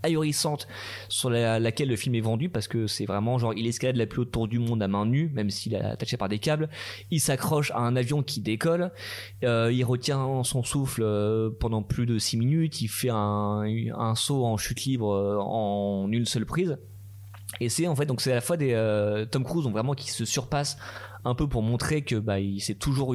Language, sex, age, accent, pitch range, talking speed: French, male, 20-39, French, 110-140 Hz, 220 wpm